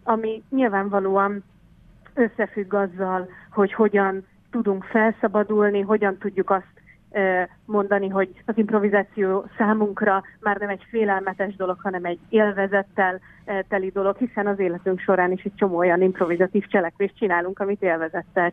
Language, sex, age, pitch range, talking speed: Hungarian, female, 30-49, 185-210 Hz, 125 wpm